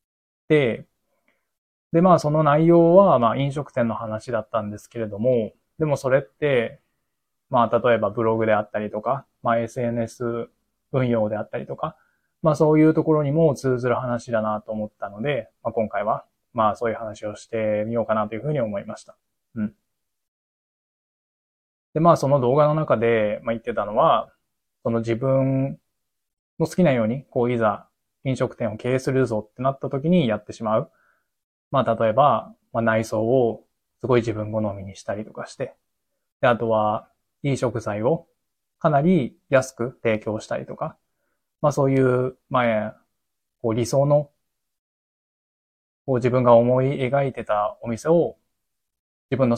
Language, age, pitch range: Japanese, 20-39, 110-135 Hz